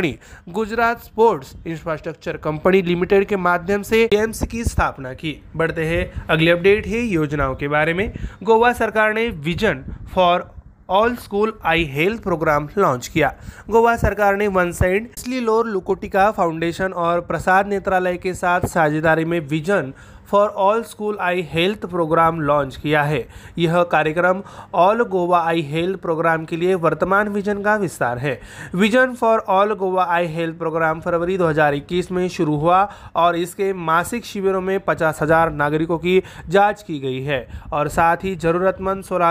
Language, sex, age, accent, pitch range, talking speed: Marathi, male, 30-49, native, 160-205 Hz, 130 wpm